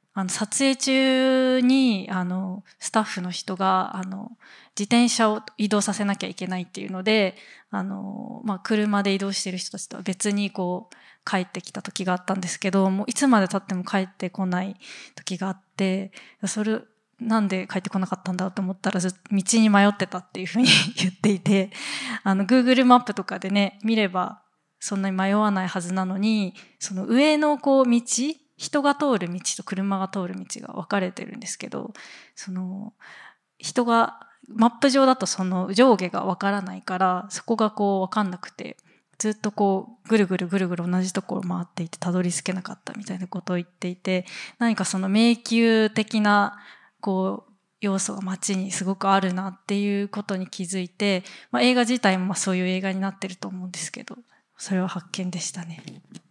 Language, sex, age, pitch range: English, female, 20-39, 185-220 Hz